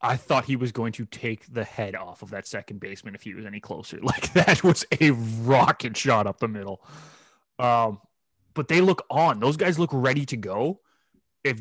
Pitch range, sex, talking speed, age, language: 110-155 Hz, male, 205 wpm, 20-39, English